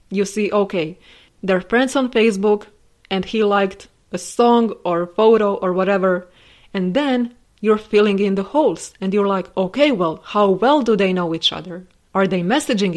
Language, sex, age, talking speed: English, female, 20-39, 175 wpm